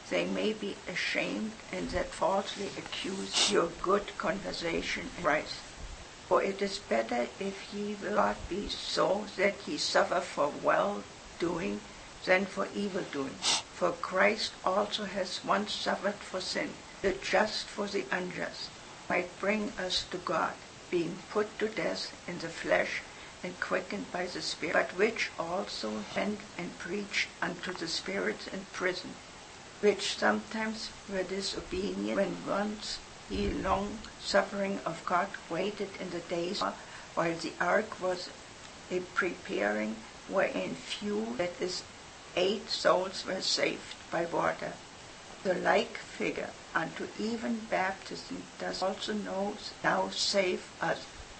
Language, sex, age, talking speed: English, female, 60-79, 135 wpm